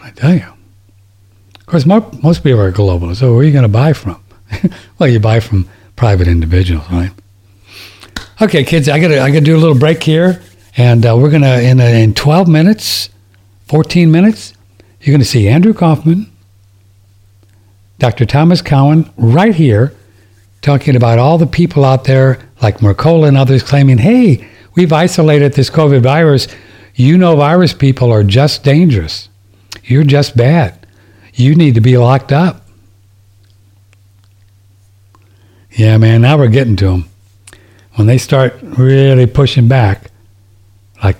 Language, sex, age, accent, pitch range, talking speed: English, male, 60-79, American, 100-140 Hz, 155 wpm